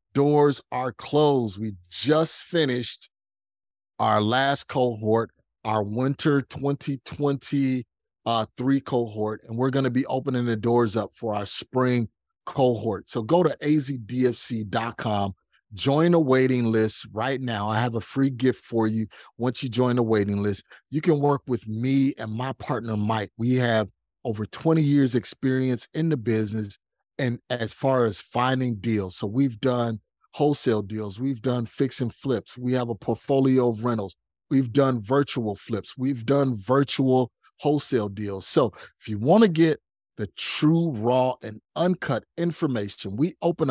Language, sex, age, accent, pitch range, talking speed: English, male, 30-49, American, 115-140 Hz, 155 wpm